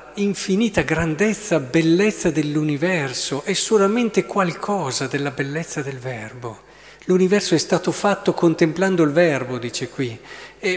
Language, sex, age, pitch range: Italian, male, 50-69, 140-175 Hz